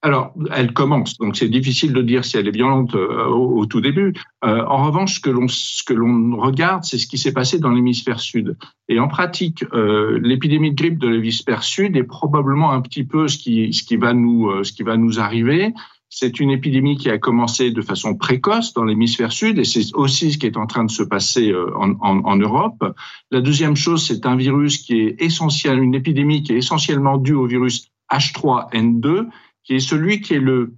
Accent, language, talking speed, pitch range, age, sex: French, French, 215 wpm, 120-155 Hz, 50-69, male